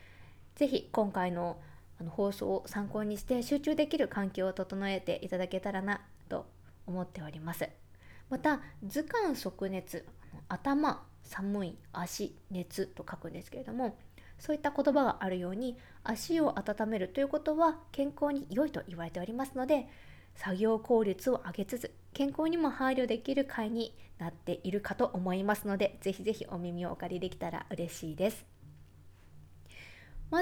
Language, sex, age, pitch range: Japanese, female, 20-39, 180-270 Hz